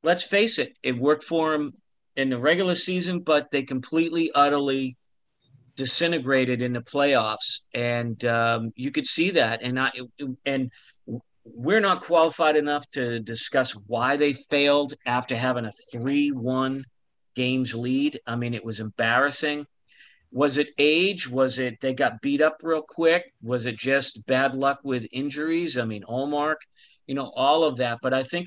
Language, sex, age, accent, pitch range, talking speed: English, male, 50-69, American, 125-145 Hz, 160 wpm